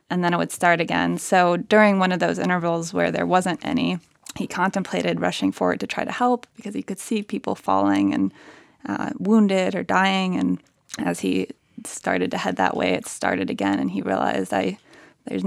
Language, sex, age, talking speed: English, female, 20-39, 200 wpm